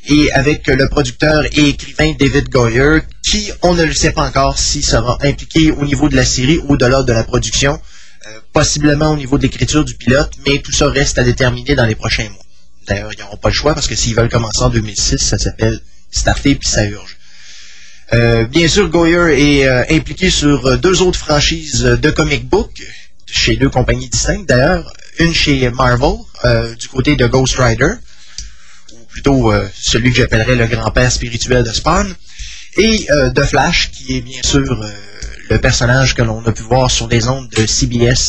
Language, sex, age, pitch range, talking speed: French, male, 30-49, 115-145 Hz, 195 wpm